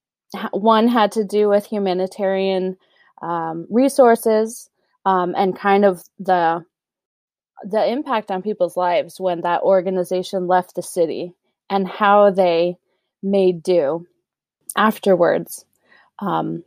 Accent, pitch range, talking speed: American, 175-210 Hz, 110 wpm